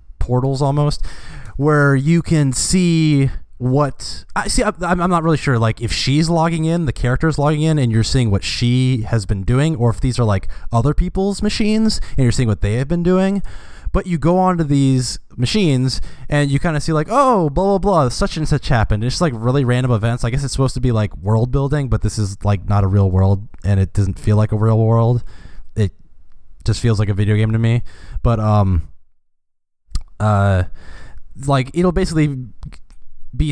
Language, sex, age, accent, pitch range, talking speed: English, male, 20-39, American, 105-150 Hz, 200 wpm